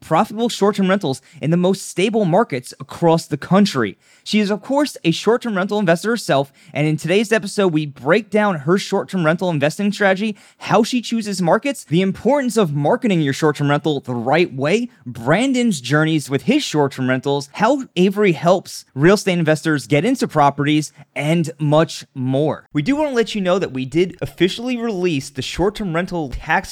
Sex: male